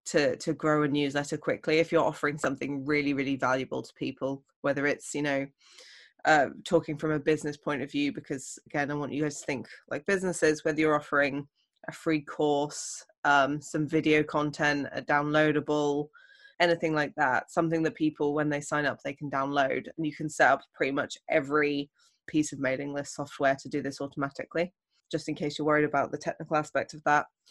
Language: English